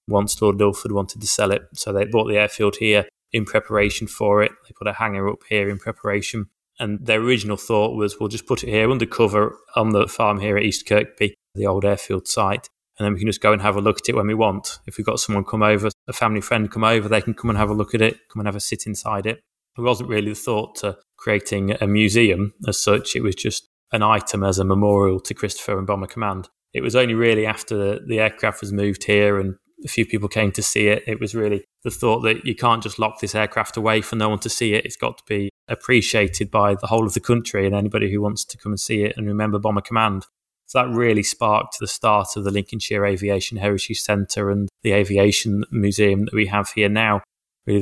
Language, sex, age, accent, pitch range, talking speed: English, male, 20-39, British, 100-110 Hz, 250 wpm